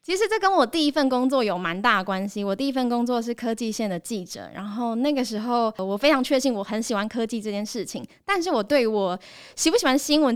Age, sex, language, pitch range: 10-29, female, Chinese, 205-280 Hz